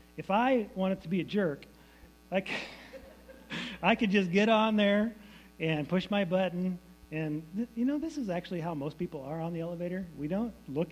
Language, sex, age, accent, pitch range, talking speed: English, male, 30-49, American, 135-185 Hz, 185 wpm